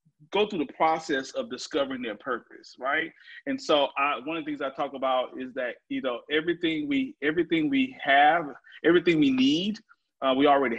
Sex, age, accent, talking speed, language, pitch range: male, 30-49, American, 185 wpm, English, 135-210 Hz